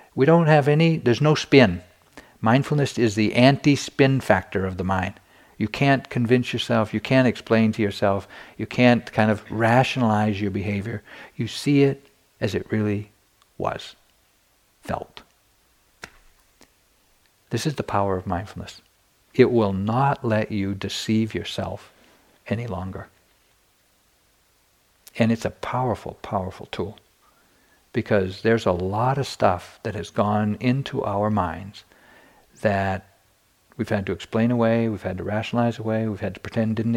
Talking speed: 145 wpm